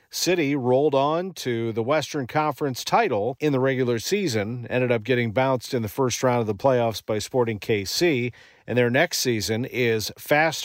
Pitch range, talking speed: 120-155 Hz, 180 wpm